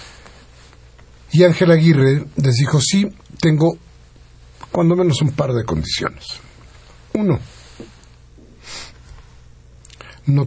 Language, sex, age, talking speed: Spanish, male, 60-79, 85 wpm